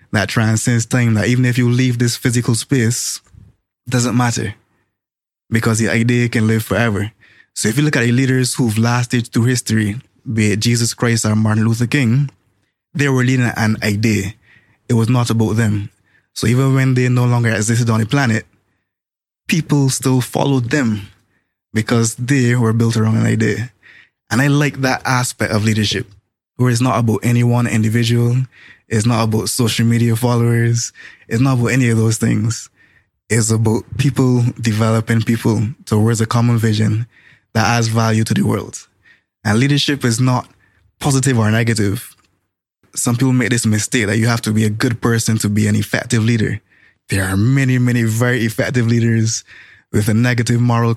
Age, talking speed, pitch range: 20-39, 175 wpm, 110-125 Hz